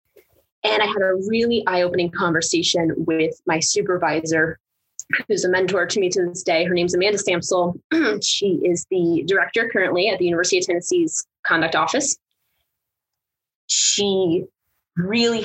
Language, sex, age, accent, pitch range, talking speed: English, female, 20-39, American, 180-245 Hz, 140 wpm